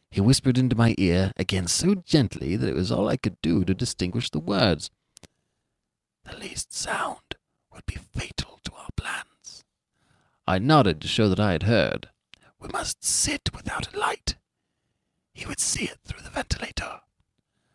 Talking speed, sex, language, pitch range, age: 165 wpm, male, English, 95-130 Hz, 30-49